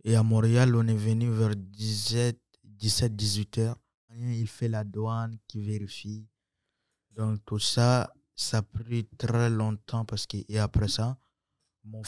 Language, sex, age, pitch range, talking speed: French, male, 20-39, 105-115 Hz, 160 wpm